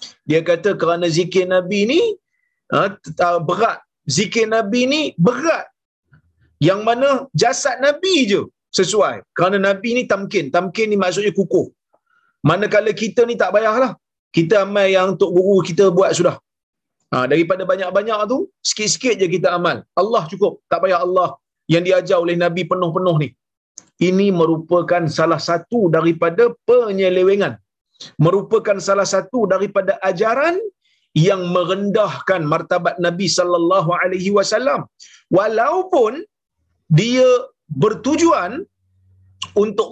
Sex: male